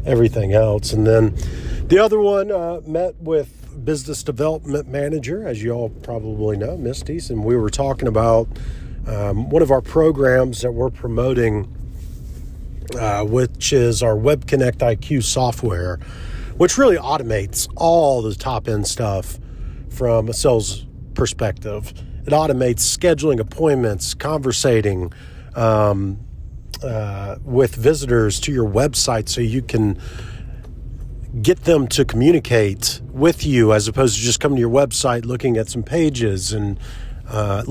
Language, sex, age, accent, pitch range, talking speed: English, male, 40-59, American, 105-135 Hz, 140 wpm